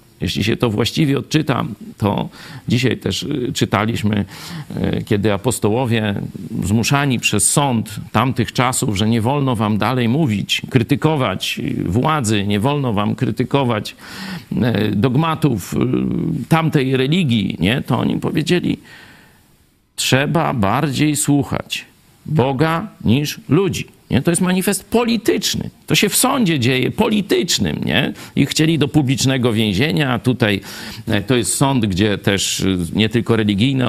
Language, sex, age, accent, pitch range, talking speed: Polish, male, 50-69, native, 115-155 Hz, 120 wpm